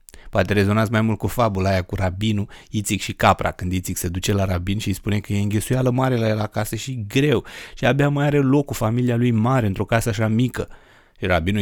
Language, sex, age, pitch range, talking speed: Romanian, male, 30-49, 95-115 Hz, 225 wpm